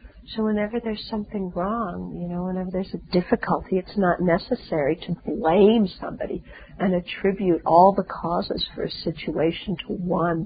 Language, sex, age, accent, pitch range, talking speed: English, female, 50-69, American, 175-215 Hz, 155 wpm